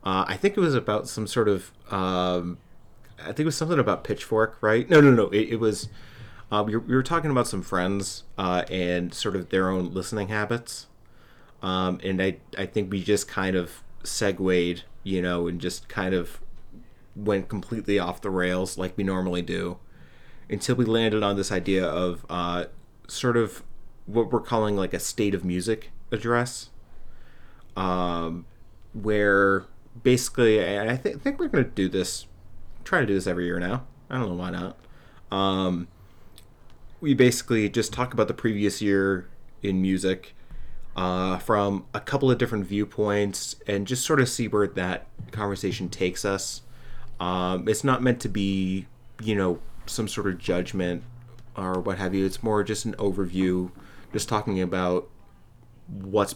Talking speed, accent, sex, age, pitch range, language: 170 wpm, American, male, 30-49, 90-115 Hz, English